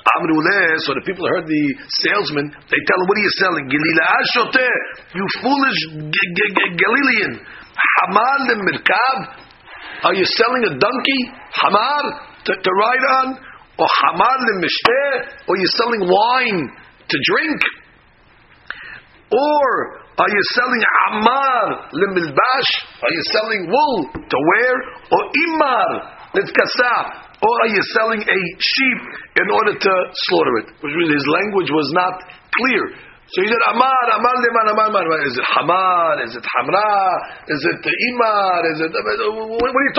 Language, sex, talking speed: English, male, 125 wpm